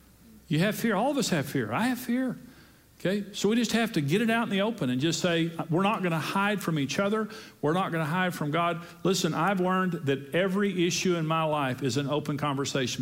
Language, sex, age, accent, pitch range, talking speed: English, male, 50-69, American, 140-185 Hz, 250 wpm